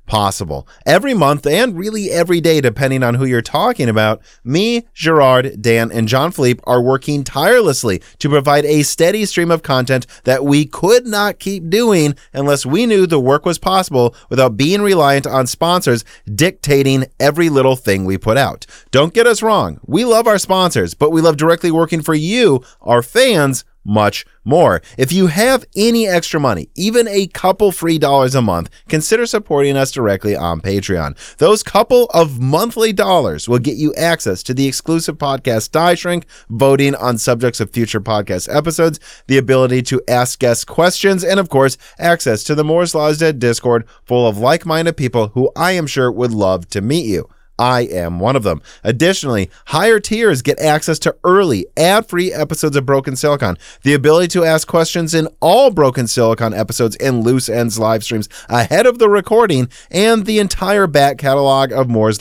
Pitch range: 120-170 Hz